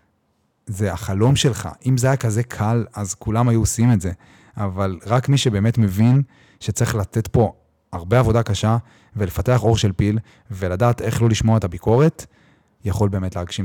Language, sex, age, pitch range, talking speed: Hebrew, male, 30-49, 100-125 Hz, 165 wpm